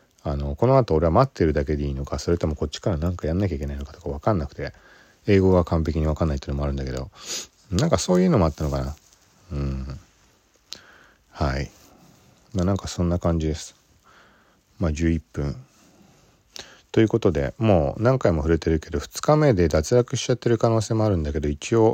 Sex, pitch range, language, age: male, 75-100 Hz, Japanese, 40-59